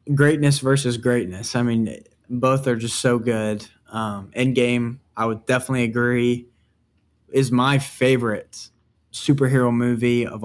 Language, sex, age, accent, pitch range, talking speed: English, male, 10-29, American, 115-130 Hz, 125 wpm